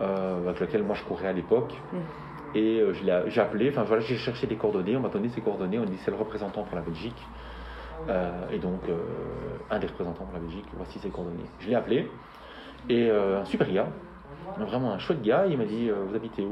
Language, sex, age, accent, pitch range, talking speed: French, male, 30-49, French, 95-150 Hz, 220 wpm